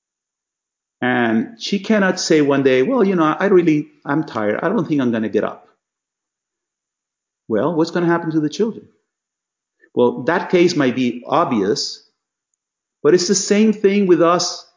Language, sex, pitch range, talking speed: English, male, 125-200 Hz, 170 wpm